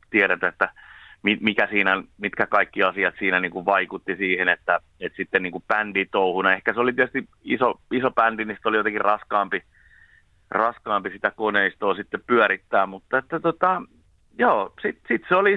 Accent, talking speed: native, 160 wpm